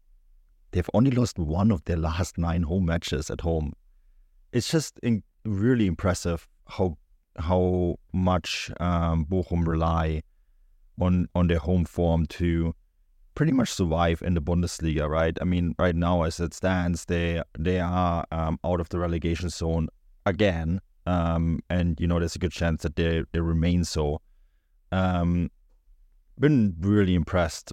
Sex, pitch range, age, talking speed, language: male, 80-90 Hz, 30-49, 150 wpm, English